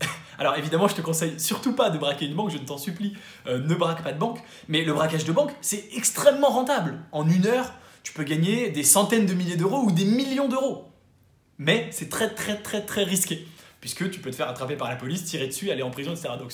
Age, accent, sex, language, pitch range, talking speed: 20-39, French, male, English, 145-195 Hz, 245 wpm